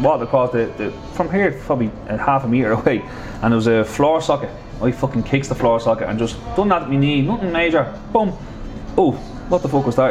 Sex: male